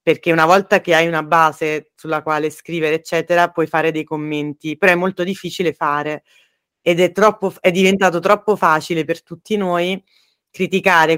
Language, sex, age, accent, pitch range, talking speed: Italian, female, 30-49, native, 155-185 Hz, 165 wpm